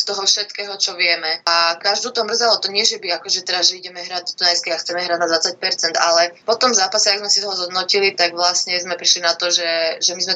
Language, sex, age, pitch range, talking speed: Slovak, female, 20-39, 170-190 Hz, 250 wpm